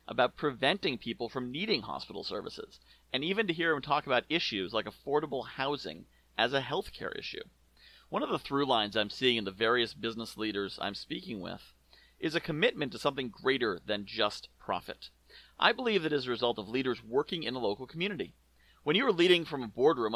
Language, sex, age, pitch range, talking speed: English, male, 40-59, 115-175 Hz, 200 wpm